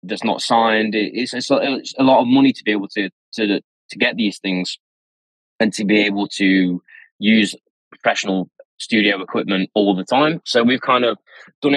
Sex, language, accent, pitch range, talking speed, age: male, English, British, 90-105 Hz, 190 wpm, 20-39